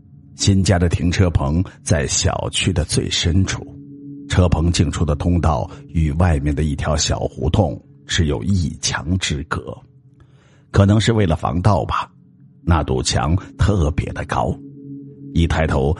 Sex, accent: male, native